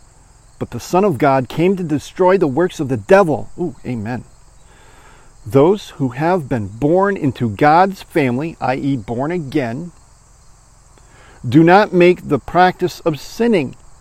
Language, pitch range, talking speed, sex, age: English, 120-175 Hz, 140 wpm, male, 40-59